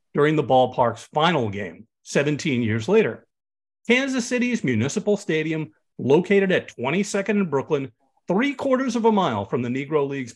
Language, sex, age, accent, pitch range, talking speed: English, male, 50-69, American, 125-195 Hz, 150 wpm